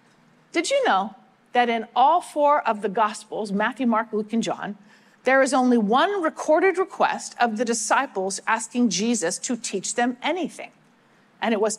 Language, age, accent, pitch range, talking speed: English, 50-69, American, 220-285 Hz, 170 wpm